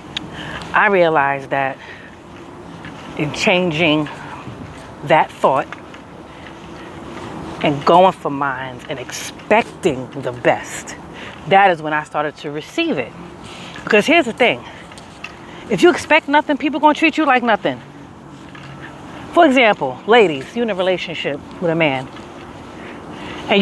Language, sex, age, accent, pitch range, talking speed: English, female, 40-59, American, 160-210 Hz, 120 wpm